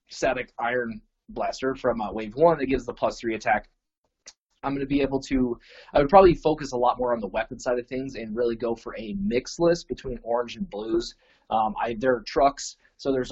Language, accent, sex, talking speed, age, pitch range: English, American, male, 225 wpm, 20-39, 110-135 Hz